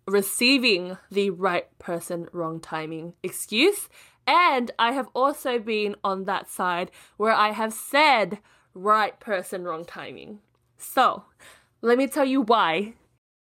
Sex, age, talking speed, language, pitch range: female, 10-29, 130 wpm, English, 195-235 Hz